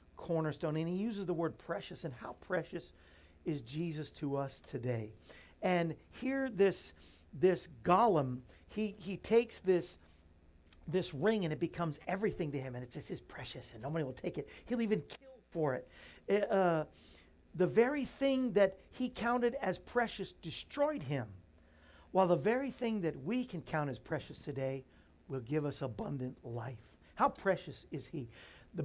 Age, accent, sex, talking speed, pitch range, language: 50-69, American, male, 160 wpm, 135-185 Hz, English